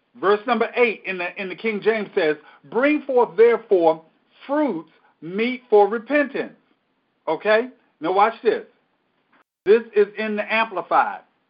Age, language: 50-69, English